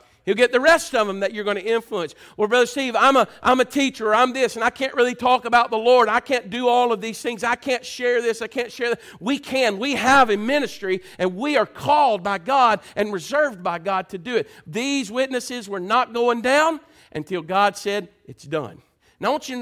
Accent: American